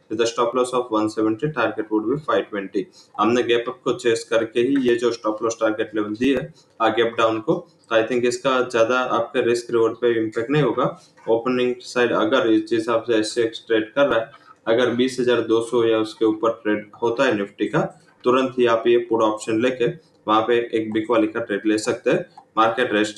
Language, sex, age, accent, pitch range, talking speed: English, male, 20-39, Indian, 110-125 Hz, 135 wpm